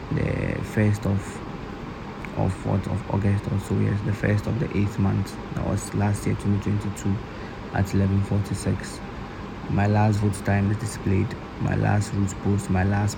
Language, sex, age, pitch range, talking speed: English, male, 30-49, 100-105 Hz, 160 wpm